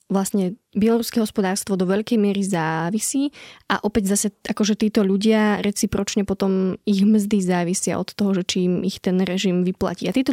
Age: 20-39